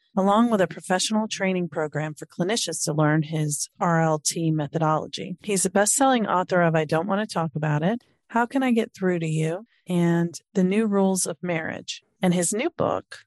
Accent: American